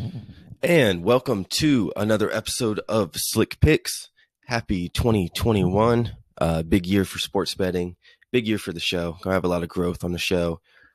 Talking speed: 165 wpm